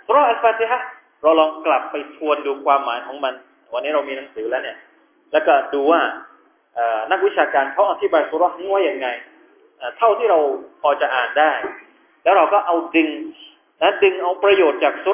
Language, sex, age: Thai, male, 30-49